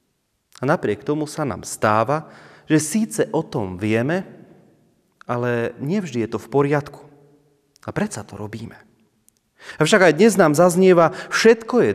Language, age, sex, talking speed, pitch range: Slovak, 30-49, male, 145 wpm, 125-175 Hz